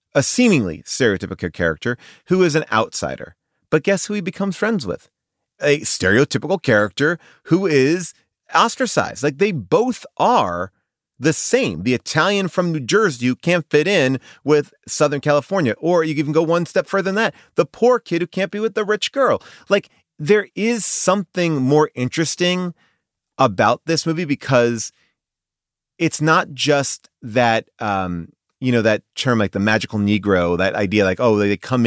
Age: 30-49